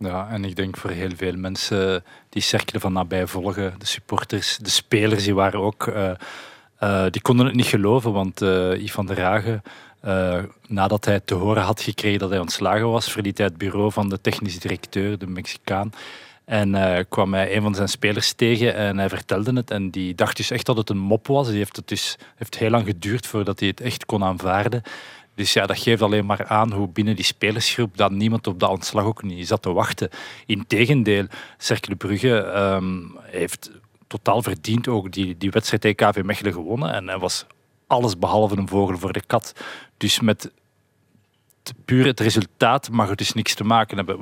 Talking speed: 200 wpm